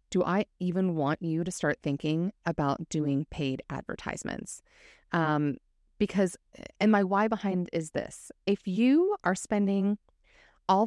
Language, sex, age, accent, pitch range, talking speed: English, female, 30-49, American, 160-205 Hz, 140 wpm